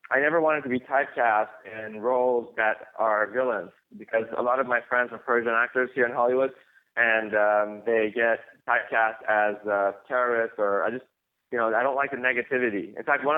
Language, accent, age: English, American, 20-39